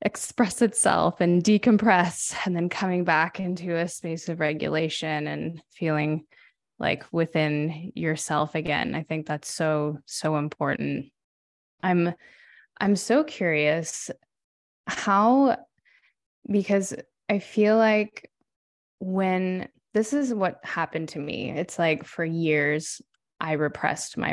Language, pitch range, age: English, 155-180 Hz, 20-39